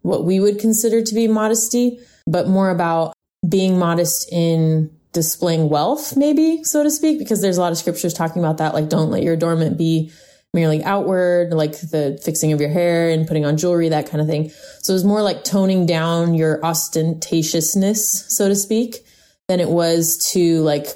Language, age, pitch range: English, 20-39, 155-185 Hz